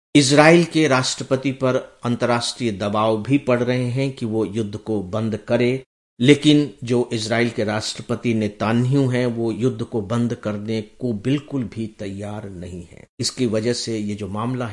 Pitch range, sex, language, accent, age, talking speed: 110-130 Hz, male, English, Indian, 50-69, 165 wpm